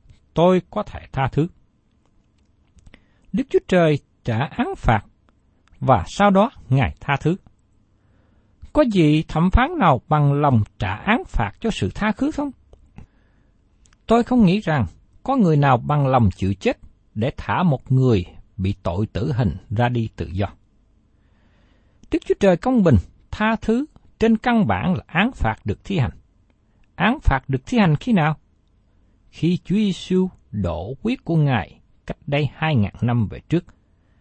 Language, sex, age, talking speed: Vietnamese, male, 60-79, 160 wpm